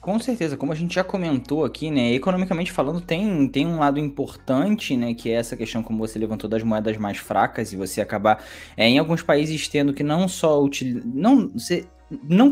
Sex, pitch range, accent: male, 115-160 Hz, Brazilian